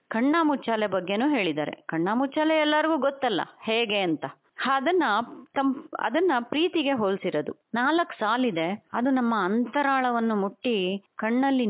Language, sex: Kannada, female